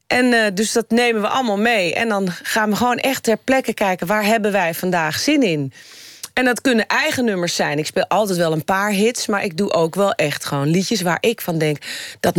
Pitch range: 165-220 Hz